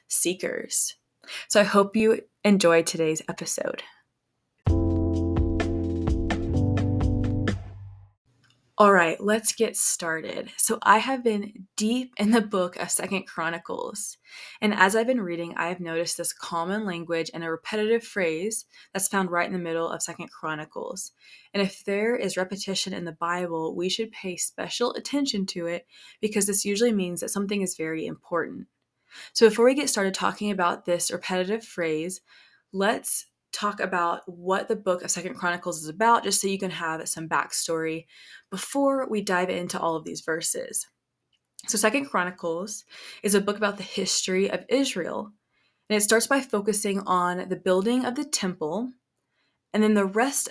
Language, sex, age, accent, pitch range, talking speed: English, female, 20-39, American, 170-210 Hz, 160 wpm